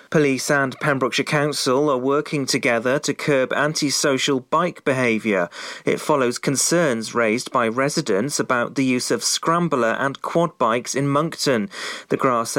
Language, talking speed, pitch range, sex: English, 145 wpm, 125-155 Hz, male